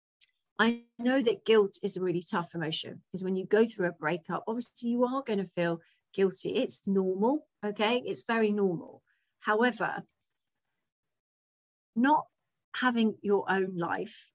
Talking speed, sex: 145 wpm, female